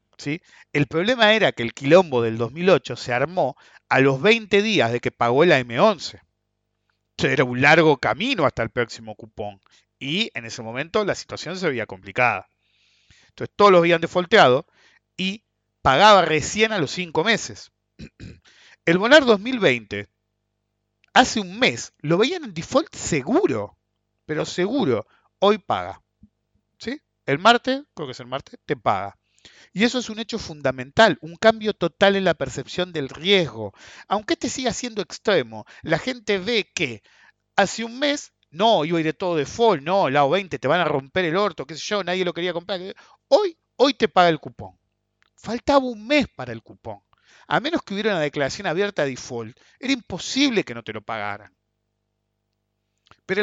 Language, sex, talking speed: English, male, 170 wpm